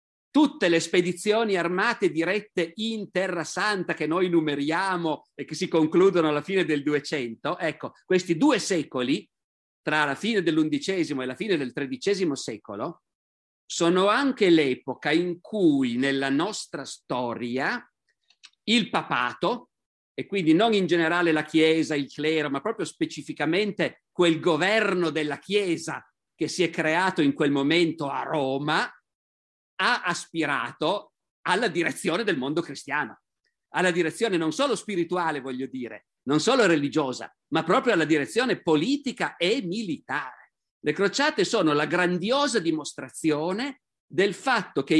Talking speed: 135 wpm